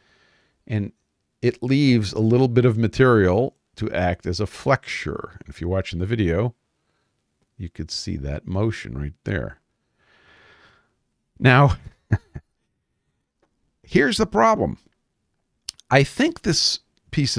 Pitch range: 90-115 Hz